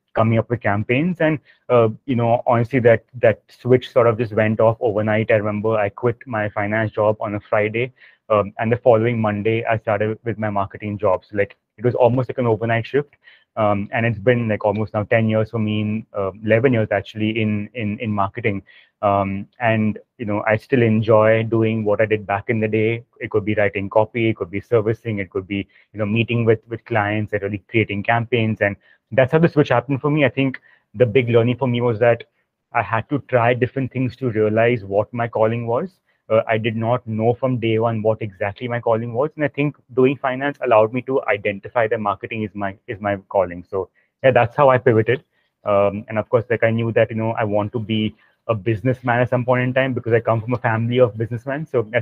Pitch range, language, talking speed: 105-125 Hz, English, 230 wpm